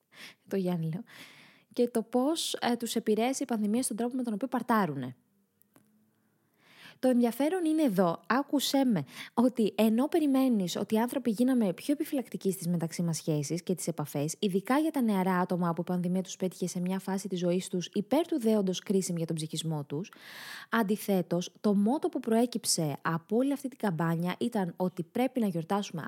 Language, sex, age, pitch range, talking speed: Greek, female, 20-39, 170-245 Hz, 175 wpm